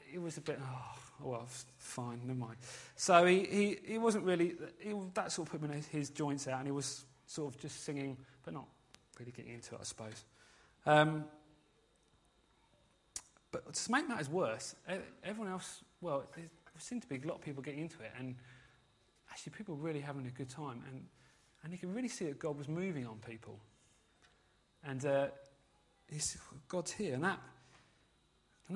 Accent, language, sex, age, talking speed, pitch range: British, English, male, 30-49, 190 wpm, 130-170 Hz